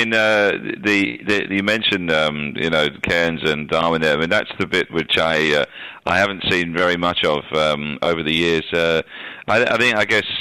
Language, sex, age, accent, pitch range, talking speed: English, male, 40-59, British, 80-95 Hz, 215 wpm